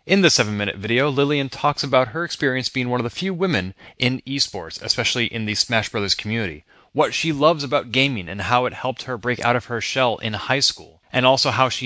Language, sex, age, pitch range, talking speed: English, male, 30-49, 110-145 Hz, 230 wpm